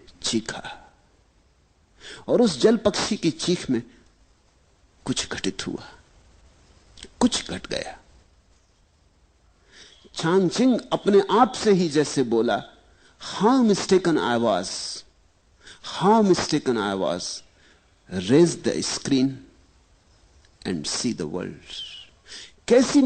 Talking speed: 90 wpm